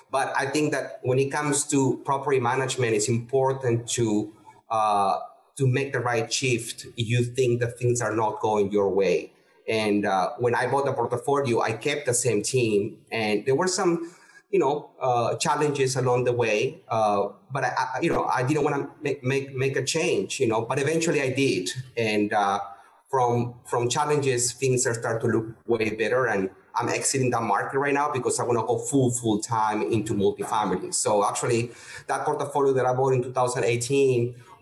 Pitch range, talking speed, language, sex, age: 115-135 Hz, 190 wpm, English, male, 30-49